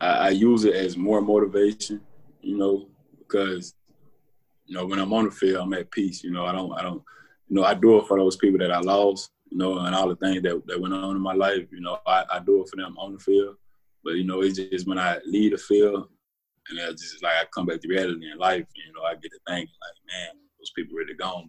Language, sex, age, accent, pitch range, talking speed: English, male, 20-39, American, 95-110 Hz, 265 wpm